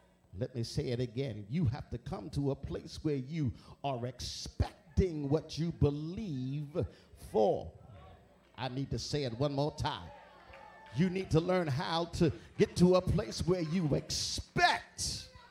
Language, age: English, 50-69